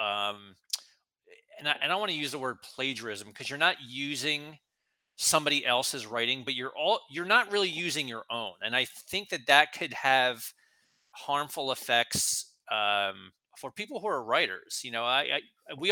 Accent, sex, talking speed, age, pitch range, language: American, male, 180 wpm, 30-49, 125-165 Hz, English